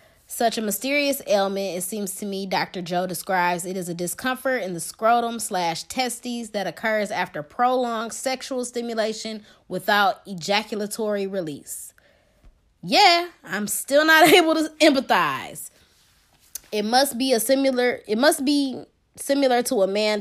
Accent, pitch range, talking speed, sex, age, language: American, 185-240 Hz, 145 wpm, female, 20-39, English